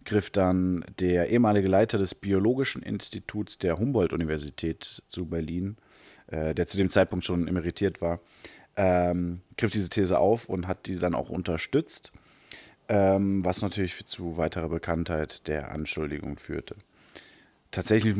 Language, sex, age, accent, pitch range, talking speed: German, male, 30-49, German, 85-100 Hz, 135 wpm